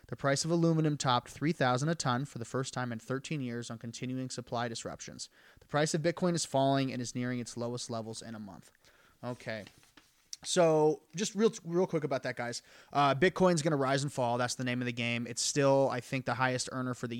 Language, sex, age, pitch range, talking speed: English, male, 30-49, 125-160 Hz, 225 wpm